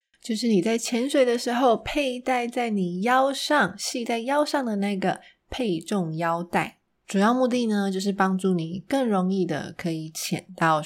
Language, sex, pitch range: Chinese, female, 185-250 Hz